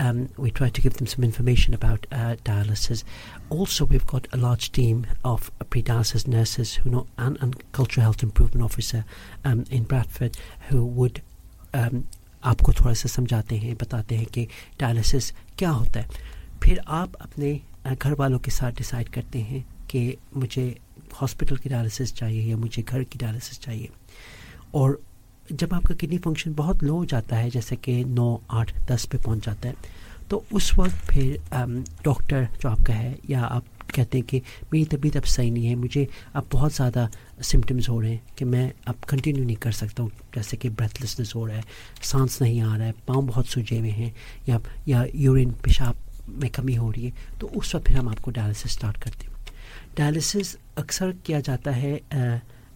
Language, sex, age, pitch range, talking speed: English, male, 50-69, 115-130 Hz, 140 wpm